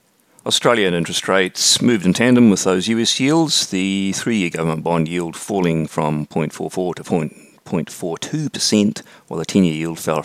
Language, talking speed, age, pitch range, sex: English, 160 wpm, 40-59, 90-125 Hz, male